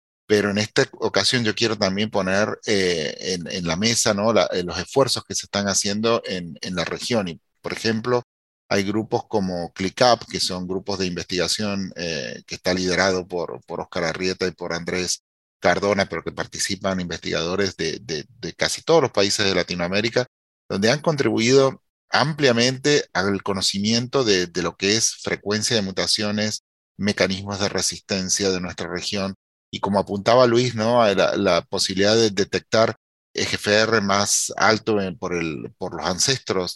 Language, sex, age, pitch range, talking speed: English, male, 40-59, 90-110 Hz, 165 wpm